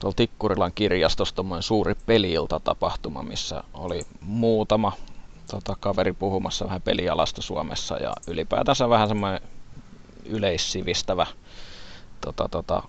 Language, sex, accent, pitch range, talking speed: Finnish, male, native, 95-110 Hz, 100 wpm